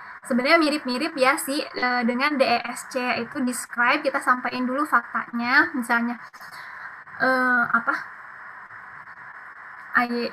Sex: female